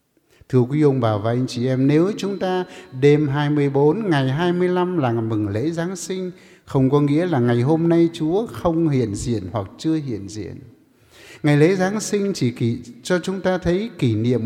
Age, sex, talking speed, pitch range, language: 60-79, male, 190 wpm, 120-170 Hz, English